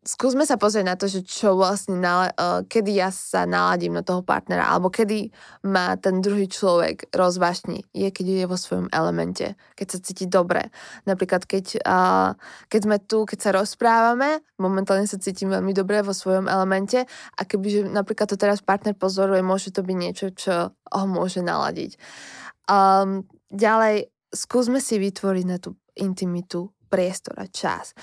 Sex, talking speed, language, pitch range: female, 155 wpm, Slovak, 185-210 Hz